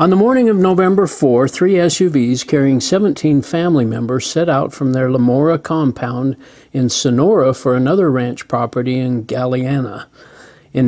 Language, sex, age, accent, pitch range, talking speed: English, male, 50-69, American, 125-160 Hz, 150 wpm